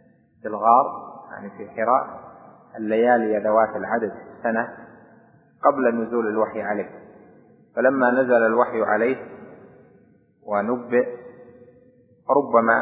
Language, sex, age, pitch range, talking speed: Arabic, male, 30-49, 110-125 Hz, 90 wpm